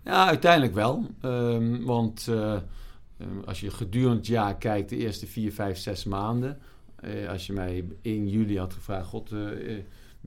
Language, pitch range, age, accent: Dutch, 95-115 Hz, 50-69, Dutch